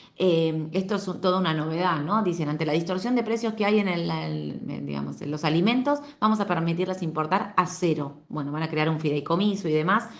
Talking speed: 195 wpm